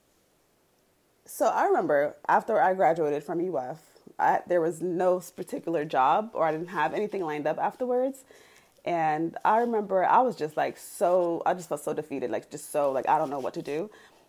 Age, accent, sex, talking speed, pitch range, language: 30-49, American, female, 185 wpm, 160-245 Hz, English